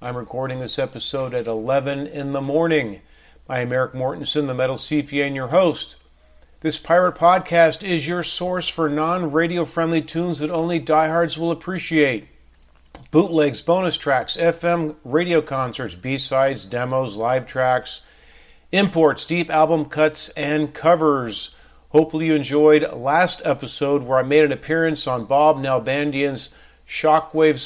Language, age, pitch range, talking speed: English, 50-69, 130-160 Hz, 135 wpm